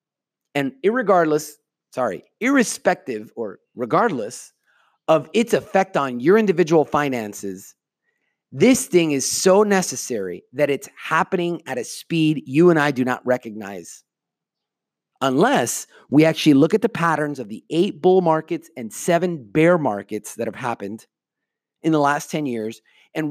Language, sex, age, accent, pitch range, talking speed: English, male, 30-49, American, 125-175 Hz, 140 wpm